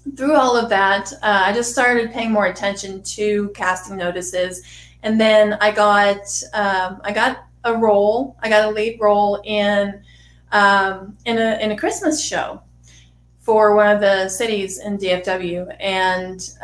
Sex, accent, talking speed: female, American, 160 wpm